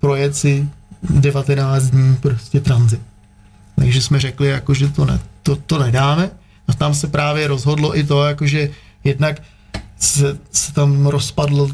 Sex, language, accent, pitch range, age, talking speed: male, Czech, native, 125-145 Hz, 30-49, 145 wpm